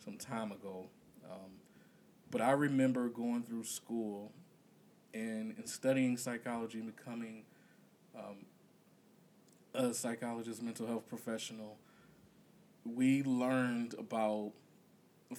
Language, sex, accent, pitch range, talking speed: English, male, American, 115-175 Hz, 100 wpm